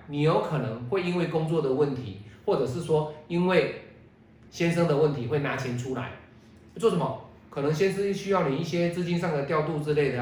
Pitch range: 125-185 Hz